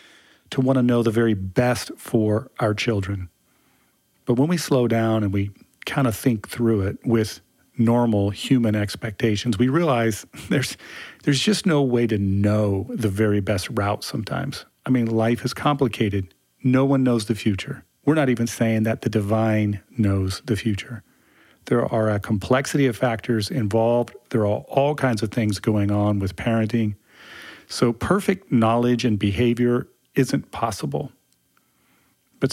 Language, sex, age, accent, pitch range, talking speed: English, male, 40-59, American, 105-125 Hz, 155 wpm